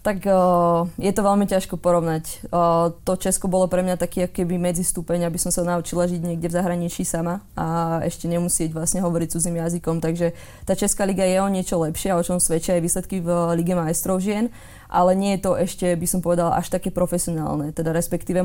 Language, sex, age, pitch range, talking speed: Slovak, female, 20-39, 170-185 Hz, 205 wpm